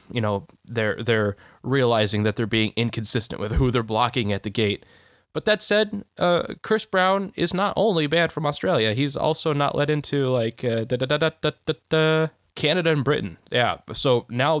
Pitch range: 110-150 Hz